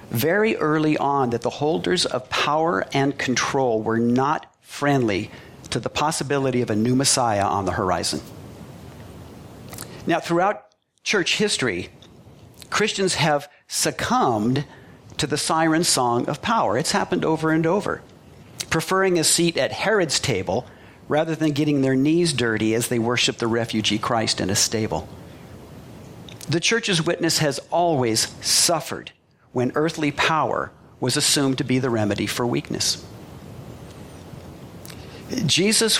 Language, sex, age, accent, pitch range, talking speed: English, male, 50-69, American, 125-165 Hz, 135 wpm